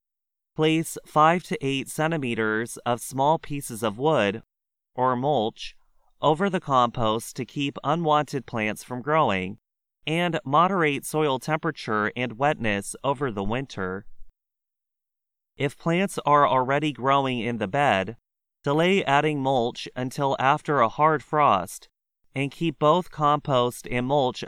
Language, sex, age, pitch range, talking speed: English, male, 30-49, 120-155 Hz, 125 wpm